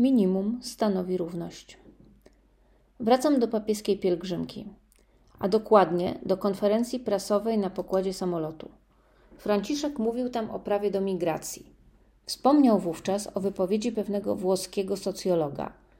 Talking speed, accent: 110 wpm, native